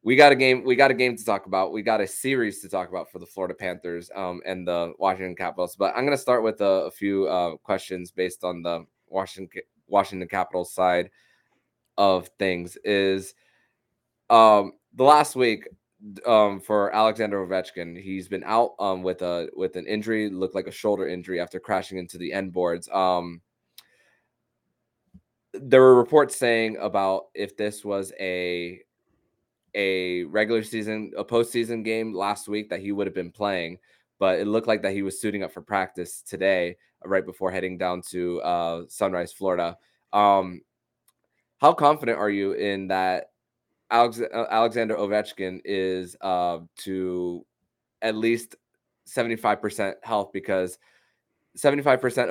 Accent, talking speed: American, 160 wpm